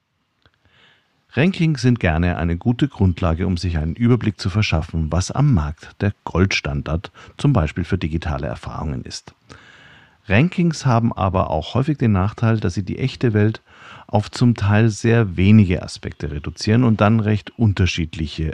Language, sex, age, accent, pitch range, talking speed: German, male, 50-69, German, 90-115 Hz, 150 wpm